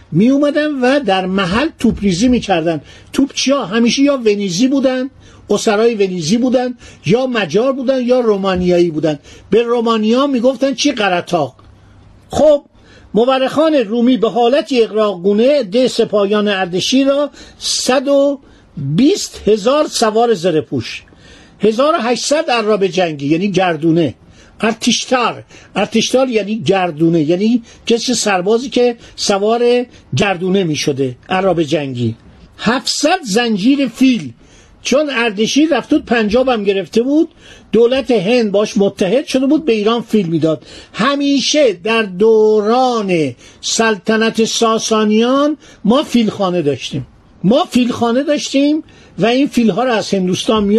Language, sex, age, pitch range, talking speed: Persian, male, 50-69, 190-260 Hz, 115 wpm